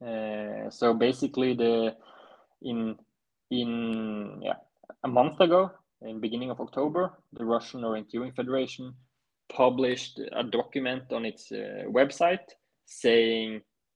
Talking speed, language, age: 115 wpm, English, 20-39